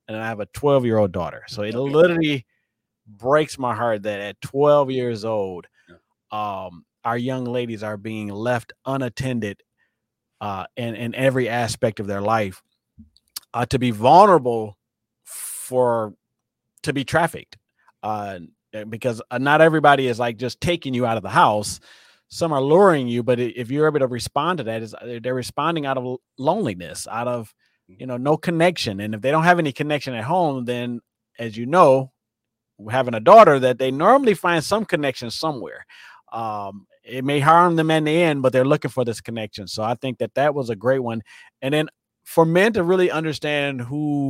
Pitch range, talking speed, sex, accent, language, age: 115-145 Hz, 180 wpm, male, American, English, 30-49